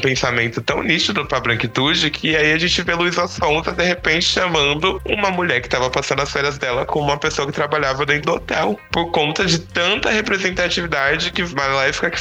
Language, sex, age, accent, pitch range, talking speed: Portuguese, male, 20-39, Brazilian, 120-155 Hz, 185 wpm